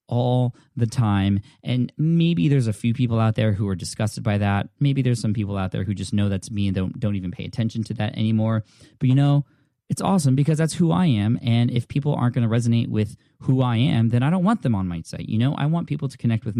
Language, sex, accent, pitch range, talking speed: English, male, American, 105-130 Hz, 275 wpm